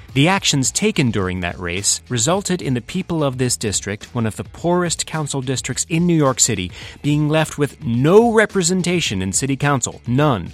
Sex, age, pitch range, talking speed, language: male, 30-49, 100-145 Hz, 180 wpm, English